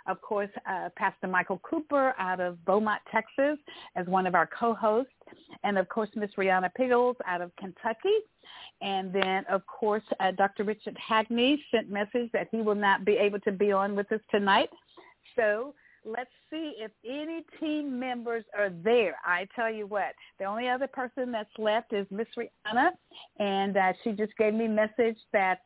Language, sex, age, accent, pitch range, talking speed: English, female, 50-69, American, 195-235 Hz, 180 wpm